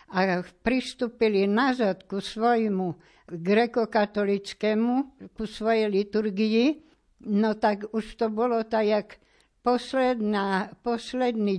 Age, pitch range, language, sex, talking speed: 60-79, 190-235 Hz, Slovak, female, 85 wpm